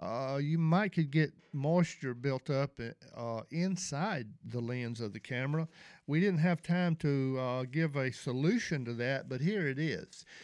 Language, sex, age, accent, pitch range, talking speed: English, male, 50-69, American, 130-180 Hz, 170 wpm